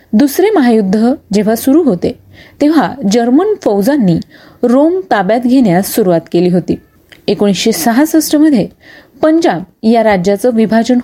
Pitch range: 200-285 Hz